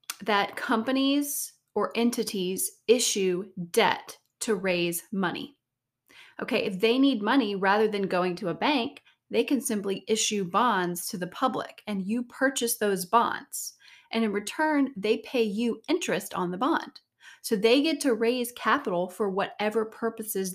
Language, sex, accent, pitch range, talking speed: English, female, American, 190-245 Hz, 150 wpm